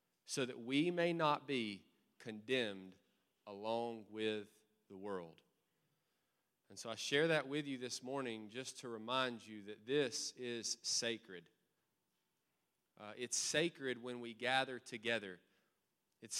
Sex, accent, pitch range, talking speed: male, American, 115-145 Hz, 130 wpm